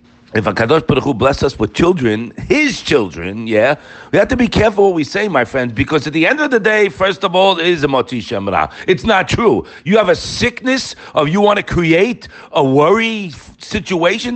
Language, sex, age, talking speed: English, male, 50-69, 215 wpm